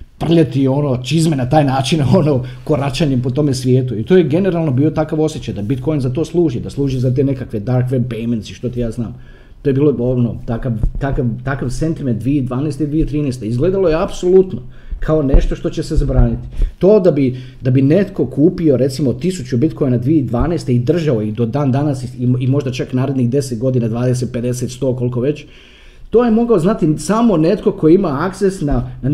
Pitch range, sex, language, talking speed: 125-165 Hz, male, Croatian, 195 wpm